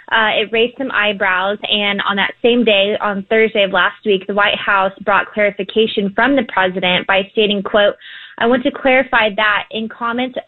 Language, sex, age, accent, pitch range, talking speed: English, female, 20-39, American, 195-225 Hz, 190 wpm